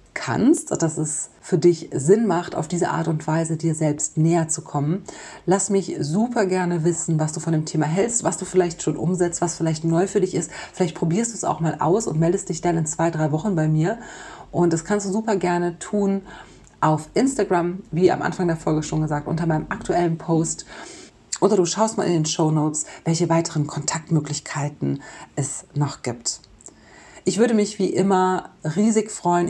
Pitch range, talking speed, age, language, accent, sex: 155-180 Hz, 195 wpm, 30-49, German, German, female